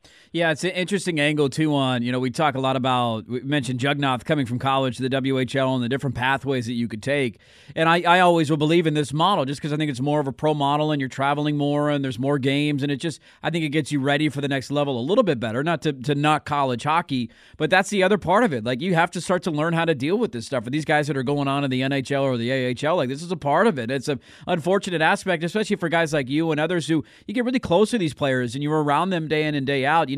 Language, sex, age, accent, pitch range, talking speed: English, male, 30-49, American, 140-175 Hz, 300 wpm